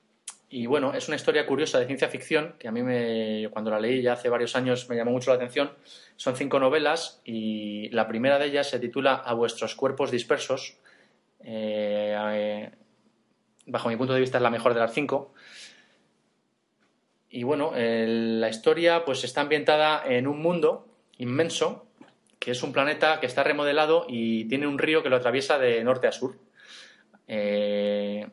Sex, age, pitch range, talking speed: male, 20-39, 115-145 Hz, 175 wpm